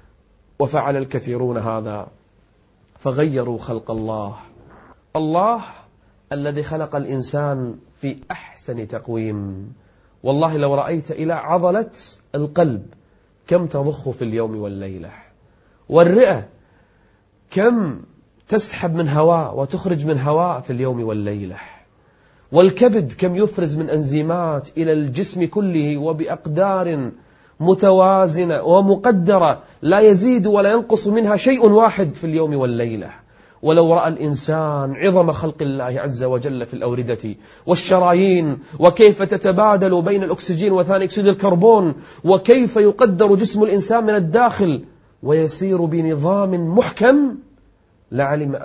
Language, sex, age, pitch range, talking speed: Arabic, male, 30-49, 110-175 Hz, 105 wpm